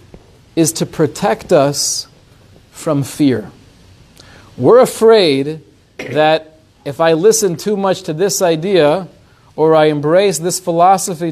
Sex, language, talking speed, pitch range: male, English, 115 wpm, 165-245 Hz